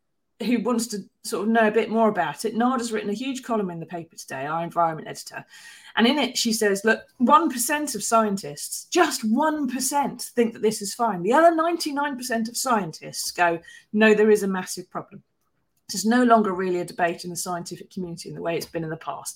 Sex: female